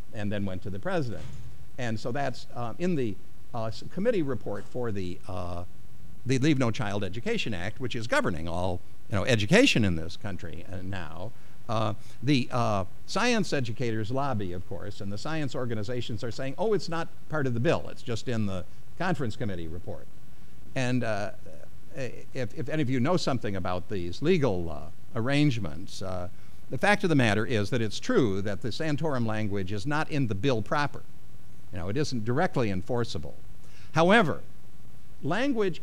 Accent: American